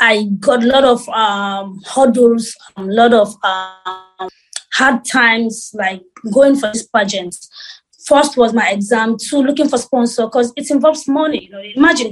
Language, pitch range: English, 215-270 Hz